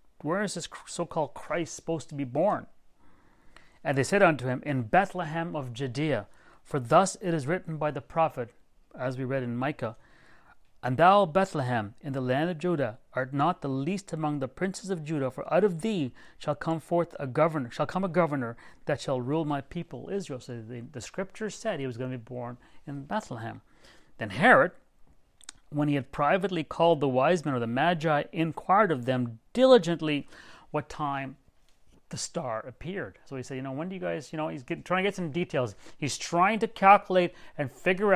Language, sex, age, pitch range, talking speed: English, male, 30-49, 130-175 Hz, 195 wpm